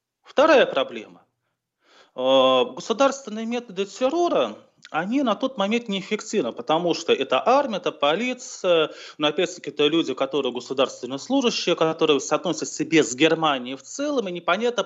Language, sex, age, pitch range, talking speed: Russian, male, 30-49, 150-230 Hz, 135 wpm